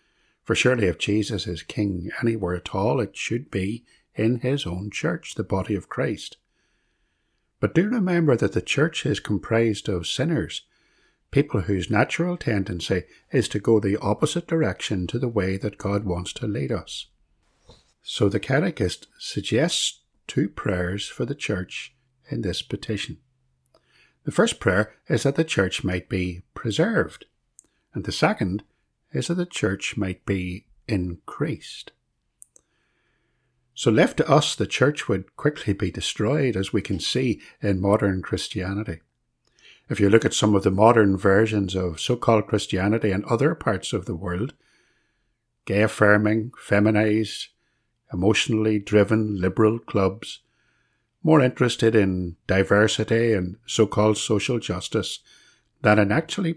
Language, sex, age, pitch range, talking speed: English, male, 60-79, 95-115 Hz, 140 wpm